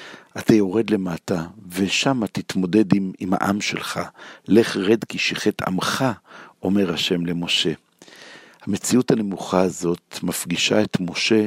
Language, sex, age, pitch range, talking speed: Hebrew, male, 60-79, 90-105 Hz, 120 wpm